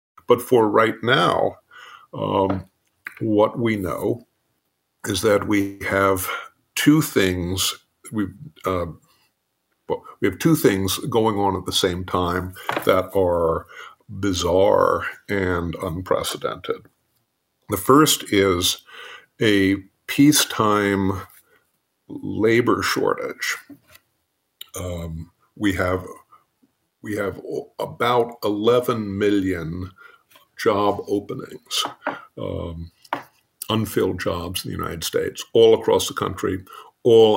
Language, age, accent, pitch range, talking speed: English, 50-69, American, 95-130 Hz, 100 wpm